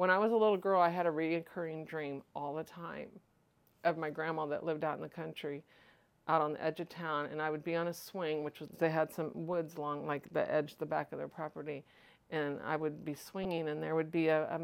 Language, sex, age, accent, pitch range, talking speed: English, female, 40-59, American, 150-175 Hz, 255 wpm